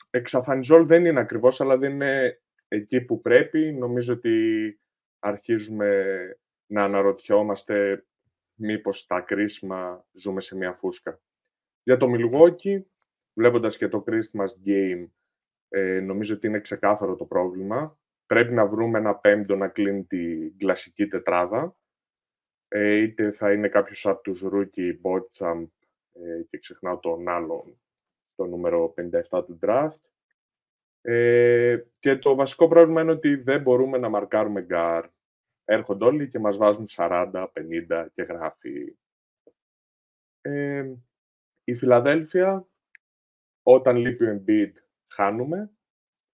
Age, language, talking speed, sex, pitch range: 20-39, Greek, 120 wpm, male, 100-135 Hz